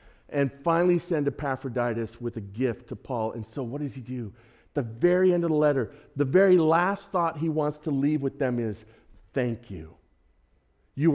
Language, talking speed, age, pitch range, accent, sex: English, 190 wpm, 40-59, 120-195 Hz, American, male